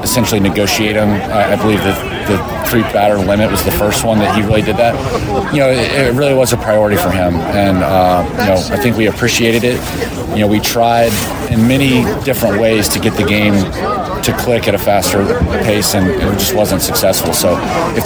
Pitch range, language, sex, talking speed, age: 100-115 Hz, English, male, 215 wpm, 30-49